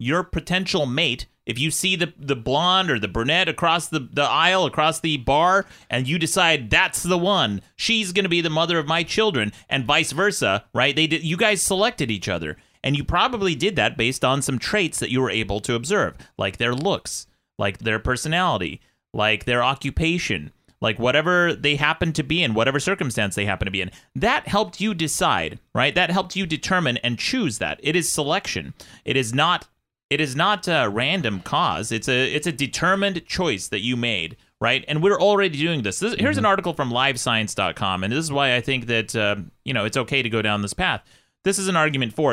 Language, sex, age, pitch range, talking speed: English, male, 30-49, 120-175 Hz, 215 wpm